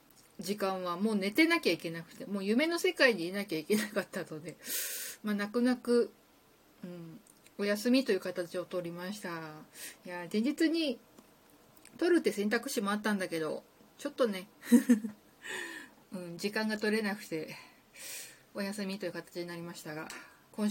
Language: Japanese